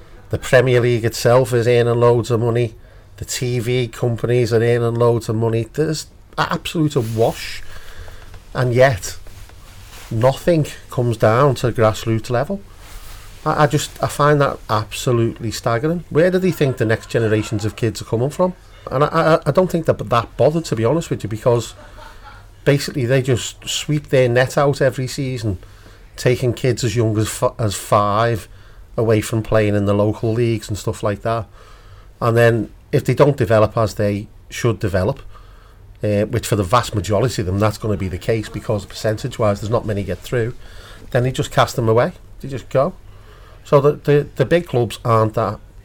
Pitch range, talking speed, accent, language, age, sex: 105-125 Hz, 185 wpm, British, English, 40-59, male